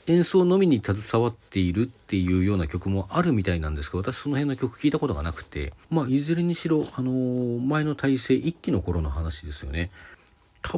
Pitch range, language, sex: 85-125 Hz, Japanese, male